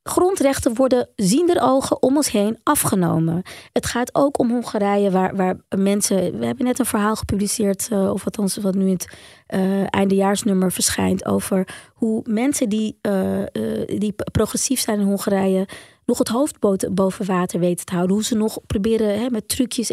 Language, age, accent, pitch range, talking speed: Dutch, 20-39, Dutch, 195-245 Hz, 170 wpm